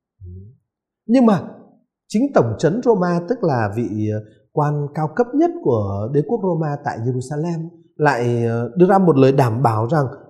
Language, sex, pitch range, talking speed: Vietnamese, male, 120-180 Hz, 155 wpm